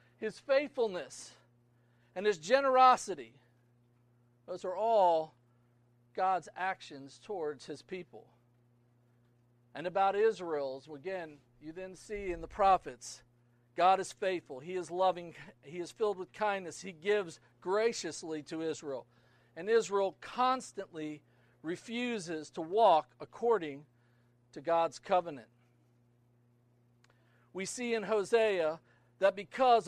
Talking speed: 110 wpm